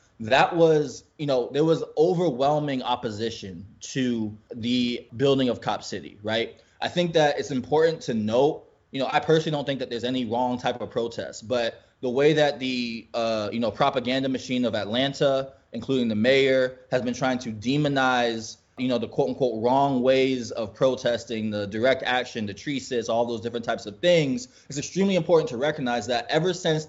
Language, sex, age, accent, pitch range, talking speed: English, male, 20-39, American, 120-145 Hz, 185 wpm